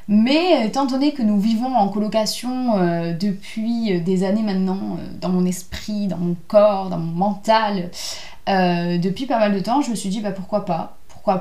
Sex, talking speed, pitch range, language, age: female, 195 wpm, 185-220 Hz, French, 20-39